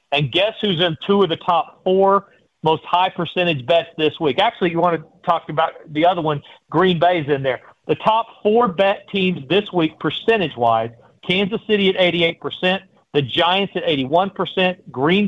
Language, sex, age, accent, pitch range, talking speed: English, male, 40-59, American, 155-195 Hz, 180 wpm